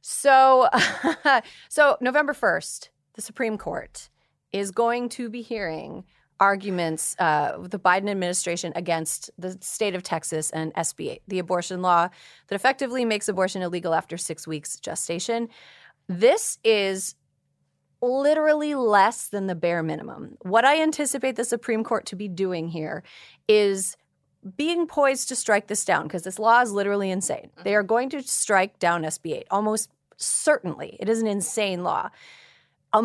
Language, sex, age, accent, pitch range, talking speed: English, female, 30-49, American, 175-240 Hz, 150 wpm